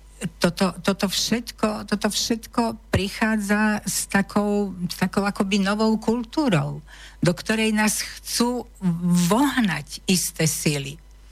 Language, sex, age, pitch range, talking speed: Slovak, female, 50-69, 155-200 Hz, 90 wpm